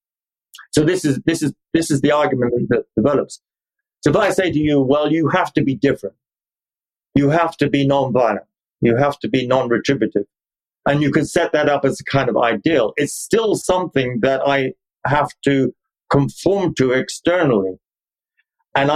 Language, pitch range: English, 125-150 Hz